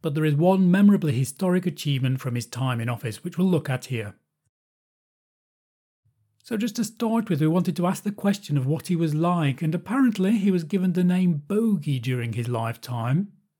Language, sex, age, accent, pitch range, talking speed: English, male, 40-59, British, 135-180 Hz, 195 wpm